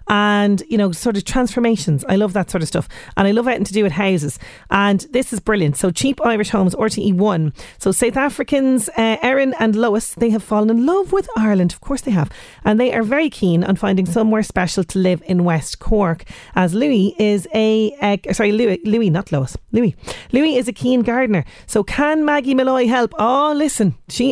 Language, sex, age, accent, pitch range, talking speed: English, female, 30-49, Irish, 185-245 Hz, 210 wpm